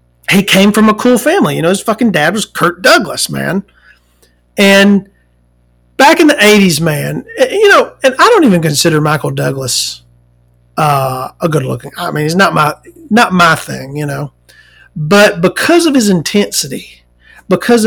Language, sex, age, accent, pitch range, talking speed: English, male, 40-59, American, 145-210 Hz, 170 wpm